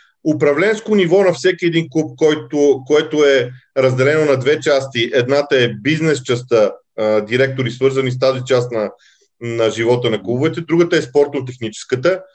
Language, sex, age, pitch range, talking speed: Bulgarian, male, 40-59, 135-185 Hz, 145 wpm